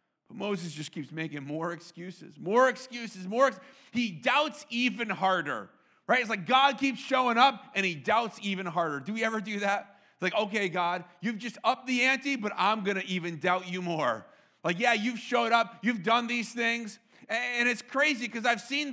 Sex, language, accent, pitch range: male, English, American, 195-260 Hz